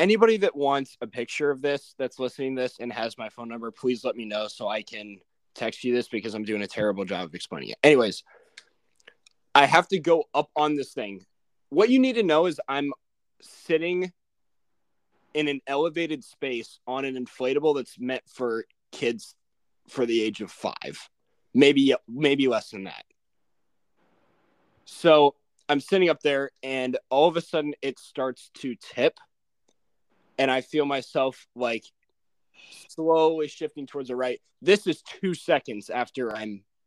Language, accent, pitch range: English, American, 125-155 Hz